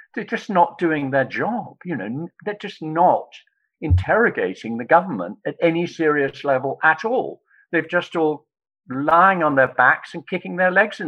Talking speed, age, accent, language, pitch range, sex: 175 wpm, 50-69, British, English, 145-200 Hz, male